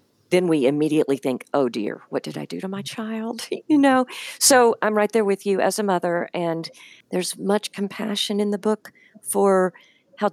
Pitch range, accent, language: 170-215 Hz, American, English